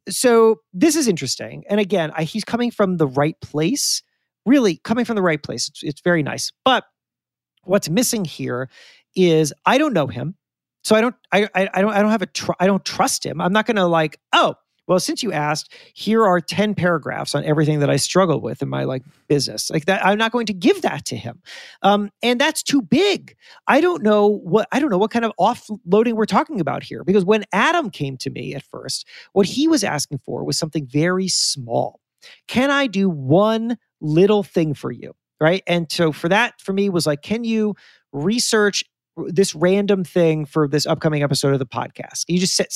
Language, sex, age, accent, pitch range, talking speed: English, male, 40-59, American, 160-220 Hz, 210 wpm